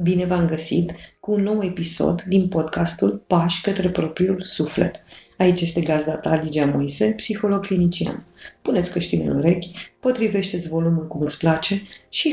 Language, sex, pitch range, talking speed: Romanian, female, 160-200 Hz, 150 wpm